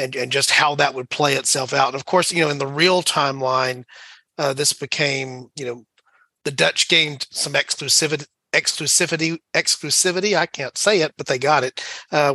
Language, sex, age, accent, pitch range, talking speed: English, male, 40-59, American, 125-155 Hz, 190 wpm